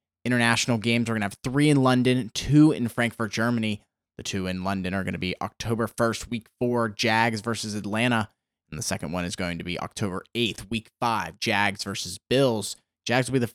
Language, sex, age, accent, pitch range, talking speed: English, male, 20-39, American, 100-120 Hz, 210 wpm